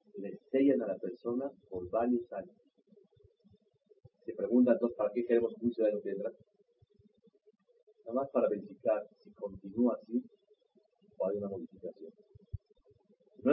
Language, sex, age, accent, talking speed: Spanish, male, 40-59, Mexican, 135 wpm